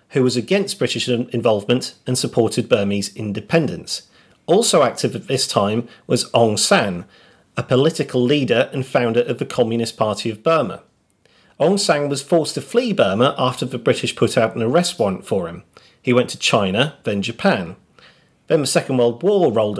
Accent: British